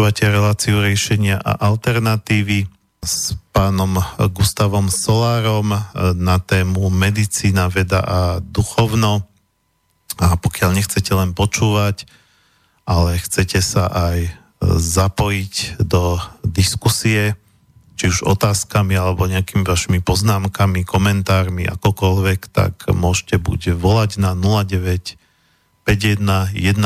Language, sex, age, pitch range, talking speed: Slovak, male, 40-59, 95-105 Hz, 90 wpm